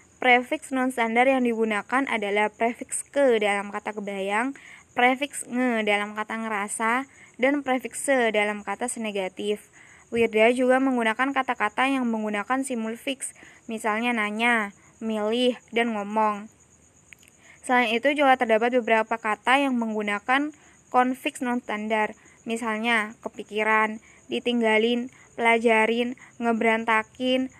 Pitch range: 215-255 Hz